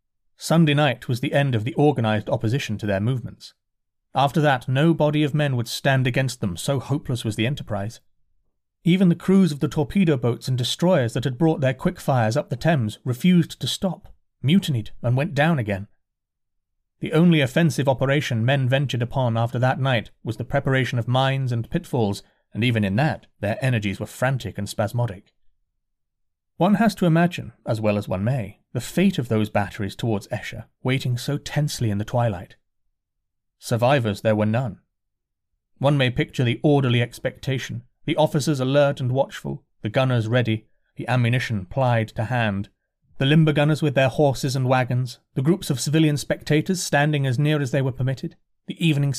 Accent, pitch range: British, 115-150 Hz